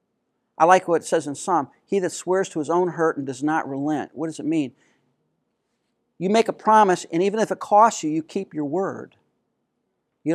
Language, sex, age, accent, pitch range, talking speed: English, male, 40-59, American, 150-190 Hz, 215 wpm